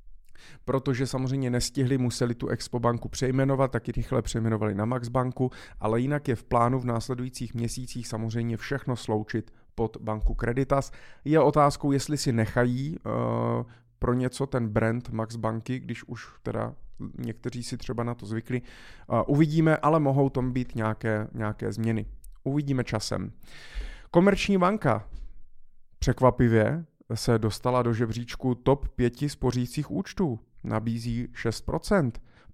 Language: Czech